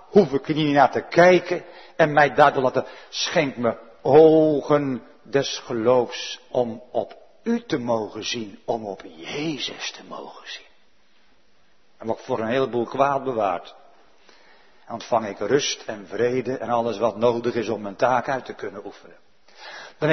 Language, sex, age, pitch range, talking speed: Dutch, male, 60-79, 140-210 Hz, 160 wpm